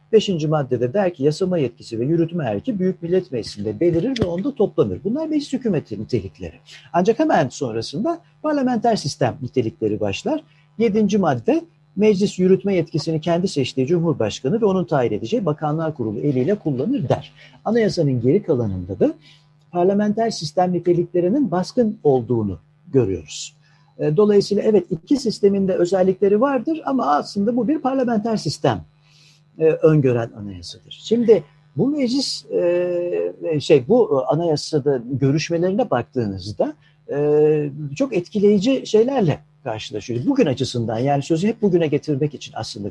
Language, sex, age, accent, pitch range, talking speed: Turkish, male, 60-79, native, 135-205 Hz, 125 wpm